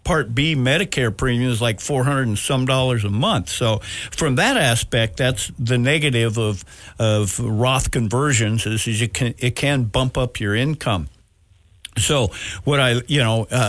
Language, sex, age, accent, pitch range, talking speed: English, male, 60-79, American, 110-140 Hz, 170 wpm